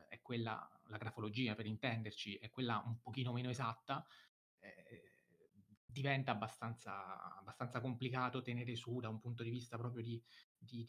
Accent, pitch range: native, 115-130 Hz